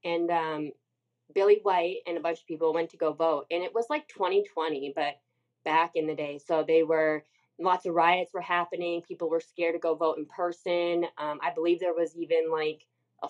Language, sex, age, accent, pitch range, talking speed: English, female, 20-39, American, 155-190 Hz, 210 wpm